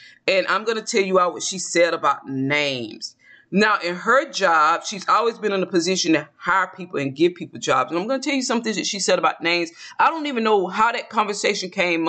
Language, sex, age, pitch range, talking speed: English, female, 20-39, 160-220 Hz, 245 wpm